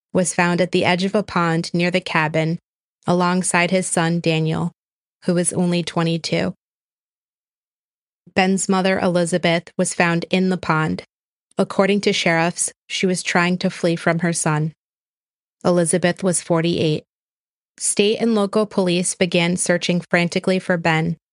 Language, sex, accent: English, female, American